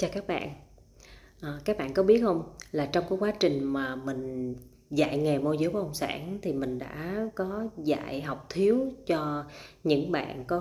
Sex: female